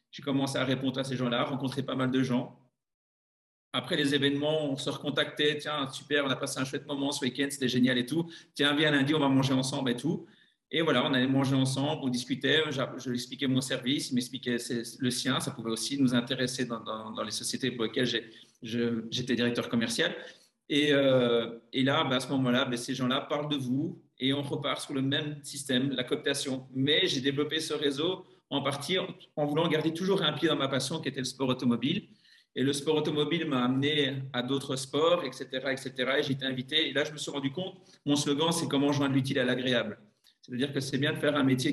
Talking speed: 225 wpm